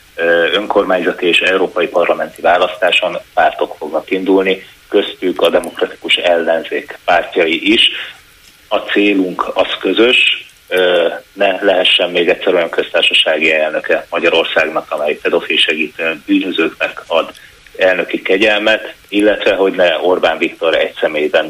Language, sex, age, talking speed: Hungarian, male, 30-49, 110 wpm